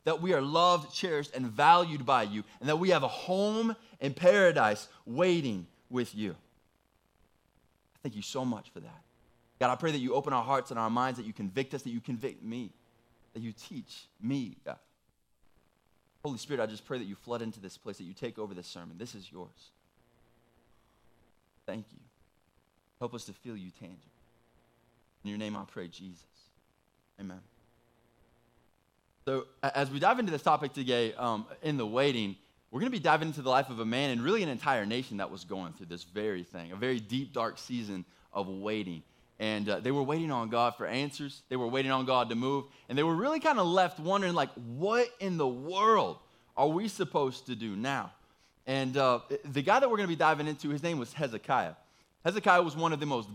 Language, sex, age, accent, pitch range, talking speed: English, male, 20-39, American, 105-150 Hz, 205 wpm